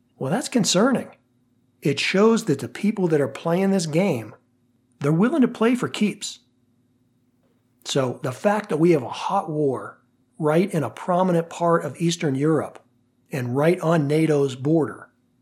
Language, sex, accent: English, male, American